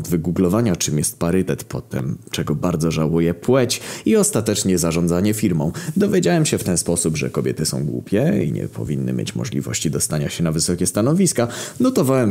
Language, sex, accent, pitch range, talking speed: Polish, male, native, 90-150 Hz, 160 wpm